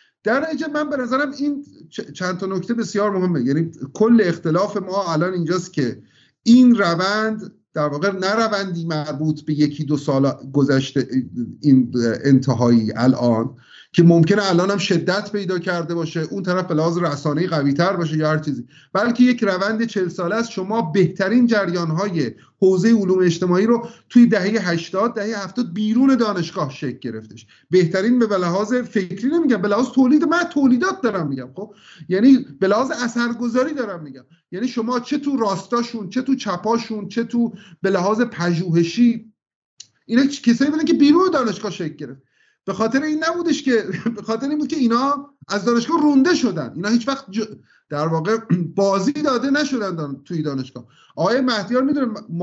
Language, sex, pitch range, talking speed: Persian, male, 165-240 Hz, 150 wpm